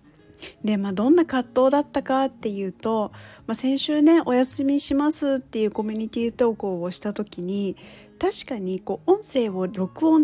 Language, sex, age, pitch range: Japanese, female, 40-59, 200-265 Hz